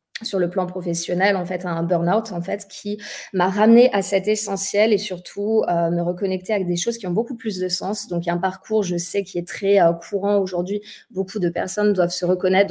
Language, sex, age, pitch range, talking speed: French, female, 30-49, 180-215 Hz, 235 wpm